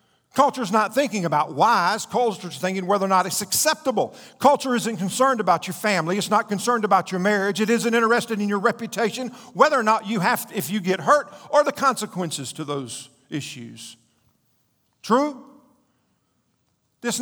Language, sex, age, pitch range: English, male, 50-69, 190-260 Hz